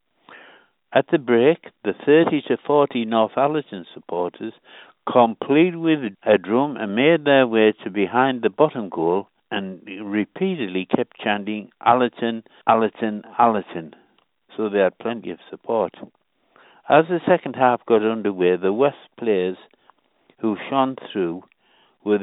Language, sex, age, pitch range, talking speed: English, male, 60-79, 110-145 Hz, 130 wpm